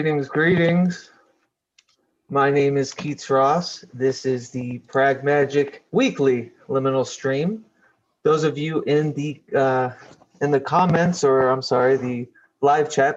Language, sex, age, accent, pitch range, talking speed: English, male, 30-49, American, 135-175 Hz, 130 wpm